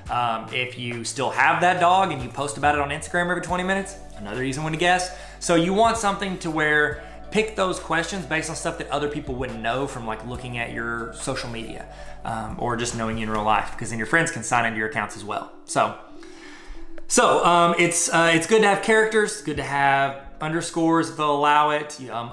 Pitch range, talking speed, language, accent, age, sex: 130-170 Hz, 230 wpm, English, American, 20-39, male